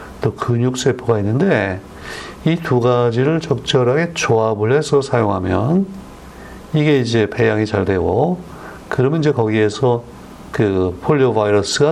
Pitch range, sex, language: 105-135 Hz, male, Korean